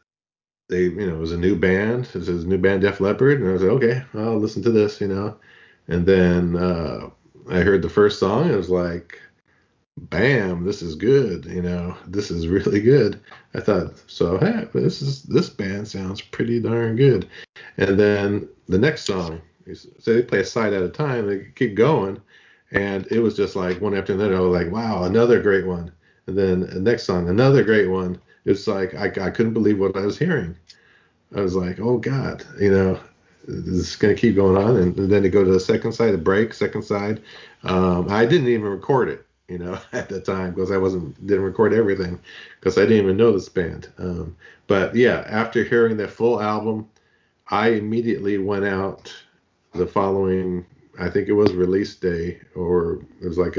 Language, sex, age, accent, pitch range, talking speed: English, male, 40-59, American, 90-105 Hz, 205 wpm